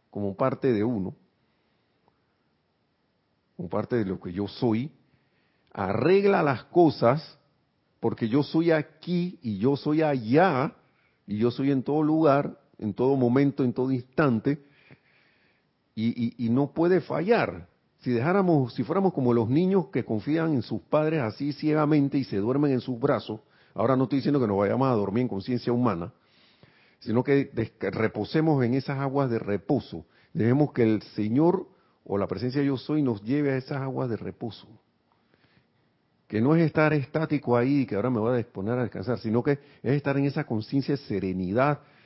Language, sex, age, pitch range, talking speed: Spanish, male, 50-69, 110-145 Hz, 175 wpm